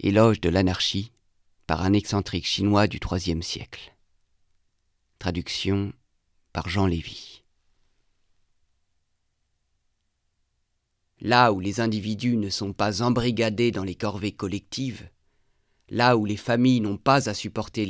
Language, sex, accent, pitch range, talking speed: French, male, French, 100-125 Hz, 115 wpm